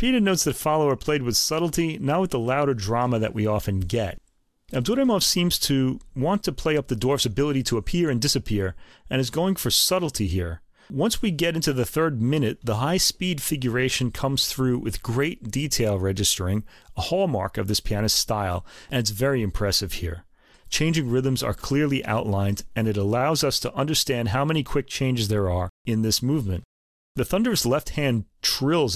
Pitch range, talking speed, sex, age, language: 110-155 Hz, 180 wpm, male, 40-59, English